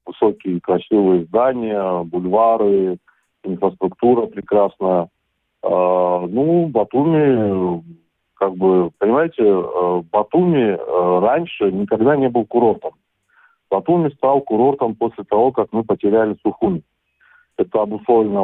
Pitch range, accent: 95-125 Hz, native